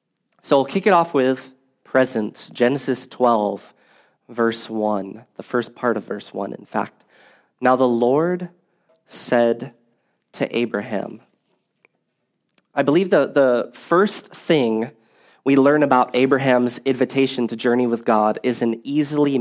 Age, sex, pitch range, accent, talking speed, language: 20-39, male, 115-140 Hz, American, 135 wpm, English